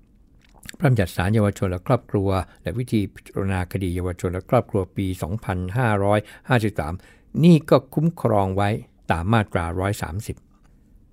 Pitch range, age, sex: 95-125 Hz, 60-79, male